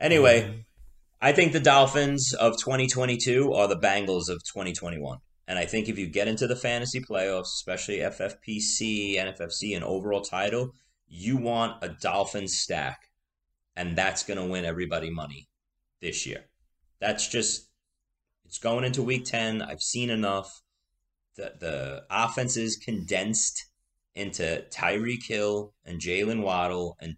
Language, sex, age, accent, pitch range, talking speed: English, male, 30-49, American, 85-110 Hz, 140 wpm